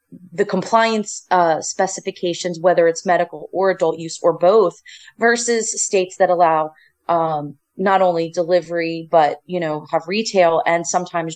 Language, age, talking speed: English, 30-49, 145 wpm